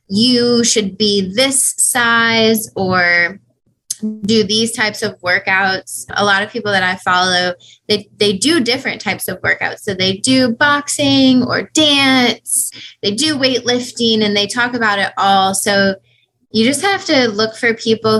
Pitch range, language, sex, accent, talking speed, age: 185-225 Hz, English, female, American, 160 wpm, 20-39